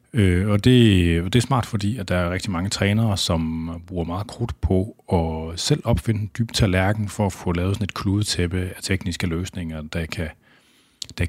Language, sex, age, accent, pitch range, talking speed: Danish, male, 30-49, native, 85-105 Hz, 190 wpm